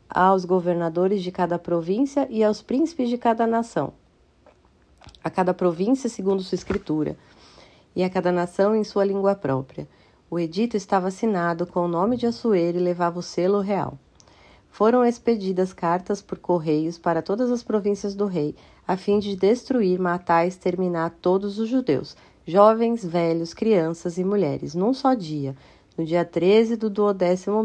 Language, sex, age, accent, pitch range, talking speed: Portuguese, female, 40-59, Brazilian, 175-215 Hz, 160 wpm